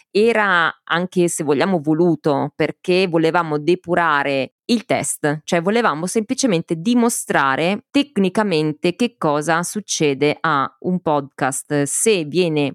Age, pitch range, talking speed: 20-39, 140-175 Hz, 110 wpm